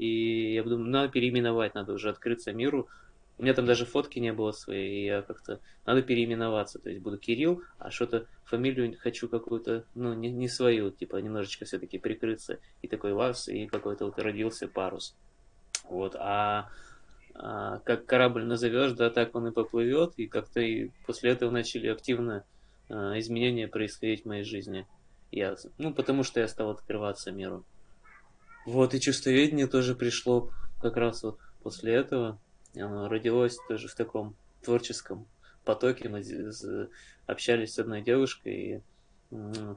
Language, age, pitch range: Russian, 20-39, 105-120 Hz